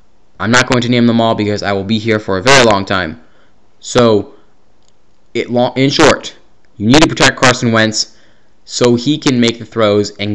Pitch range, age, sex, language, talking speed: 105-125 Hz, 10-29, male, English, 205 wpm